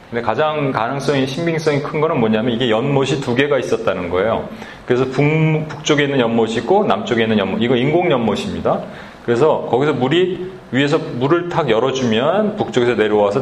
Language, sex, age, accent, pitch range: Korean, male, 30-49, native, 115-165 Hz